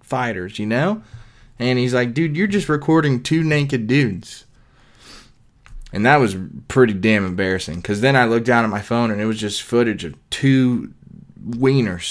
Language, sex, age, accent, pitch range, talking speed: English, male, 20-39, American, 105-125 Hz, 175 wpm